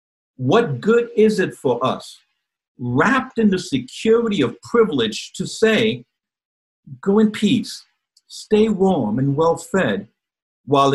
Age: 50-69